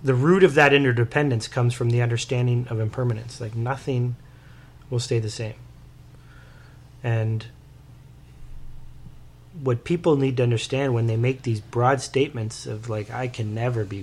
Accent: American